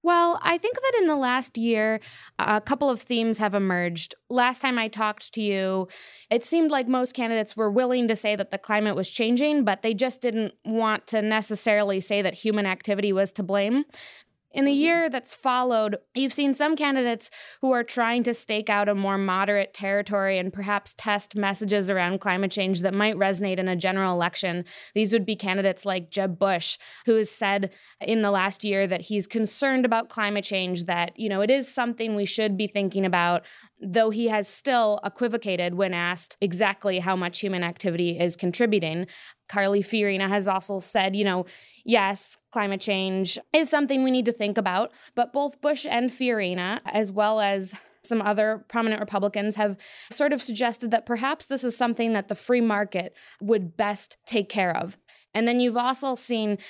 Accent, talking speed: American, 190 wpm